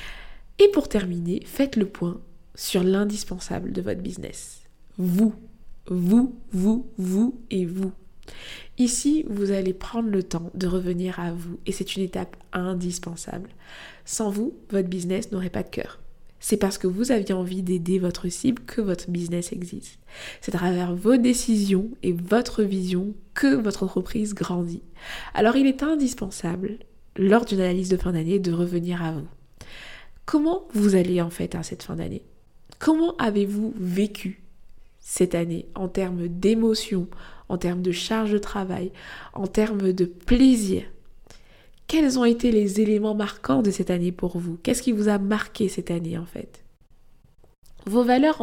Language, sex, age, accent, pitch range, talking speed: French, female, 20-39, French, 180-230 Hz, 160 wpm